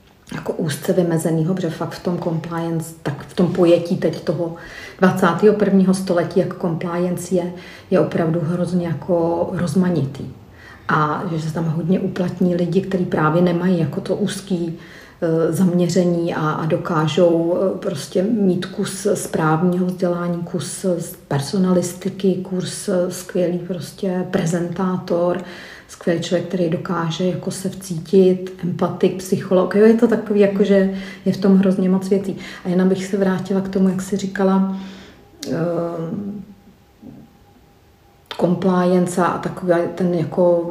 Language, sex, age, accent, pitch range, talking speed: Czech, female, 40-59, native, 165-185 Hz, 135 wpm